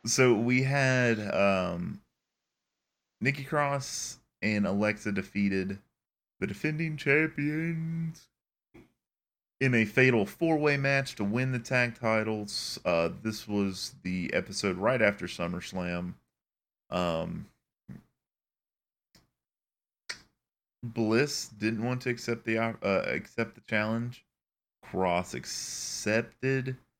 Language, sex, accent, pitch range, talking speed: English, male, American, 95-120 Hz, 95 wpm